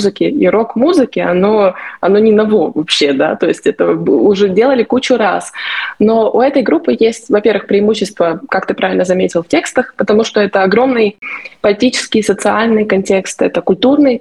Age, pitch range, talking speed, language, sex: 20-39, 190-255 Hz, 160 wpm, Russian, female